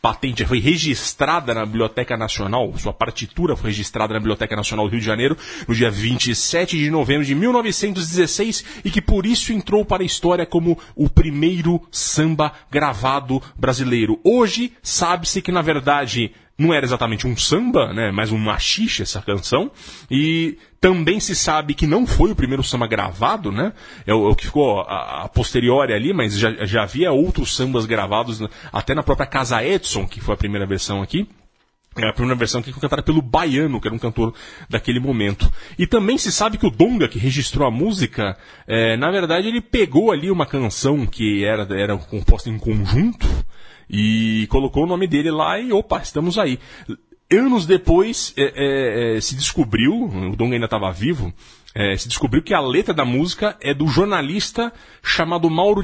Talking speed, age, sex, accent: 180 wpm, 30-49, male, Brazilian